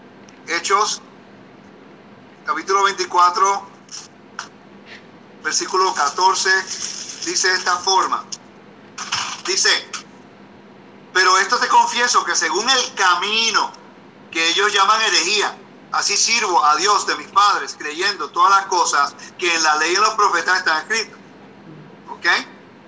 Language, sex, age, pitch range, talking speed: Spanish, male, 50-69, 190-285 Hz, 115 wpm